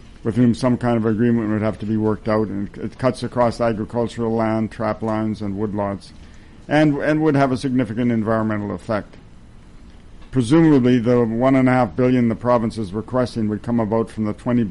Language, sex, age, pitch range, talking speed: English, male, 60-79, 105-115 Hz, 180 wpm